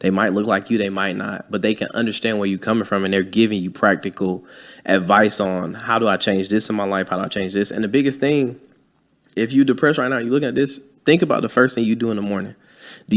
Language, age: English, 20-39